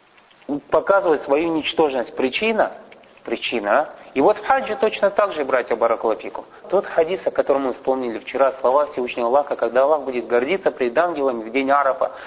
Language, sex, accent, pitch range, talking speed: Russian, male, native, 135-185 Hz, 160 wpm